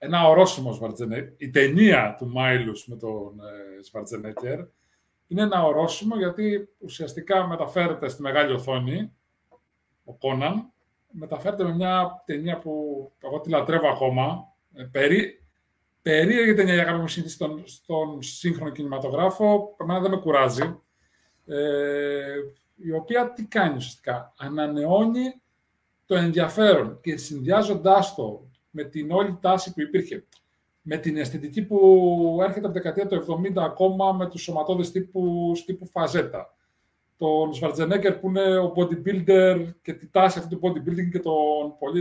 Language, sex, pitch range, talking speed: Greek, male, 140-190 Hz, 130 wpm